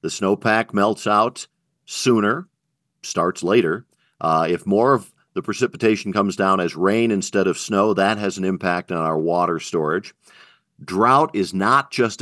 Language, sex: English, male